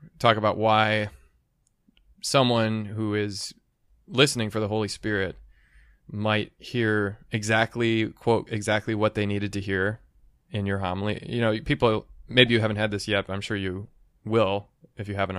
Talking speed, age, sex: 160 wpm, 20-39, male